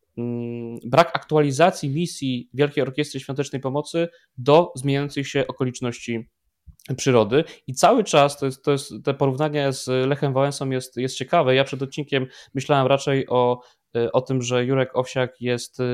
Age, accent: 20-39, native